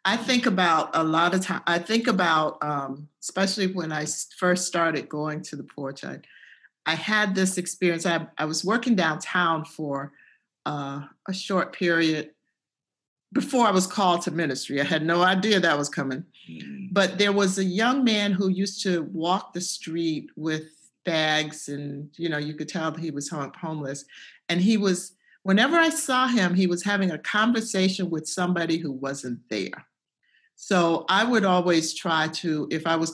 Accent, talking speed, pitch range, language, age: American, 175 wpm, 155-190 Hz, English, 50-69